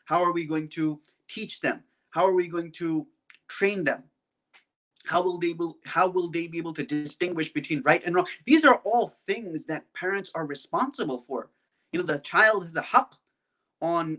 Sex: male